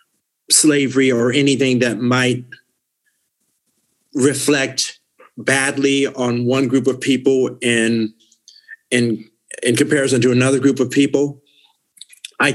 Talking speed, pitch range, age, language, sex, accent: 105 wpm, 125-145 Hz, 50-69, English, male, American